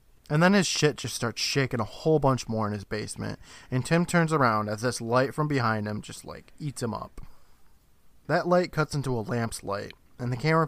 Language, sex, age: English, male, 20-39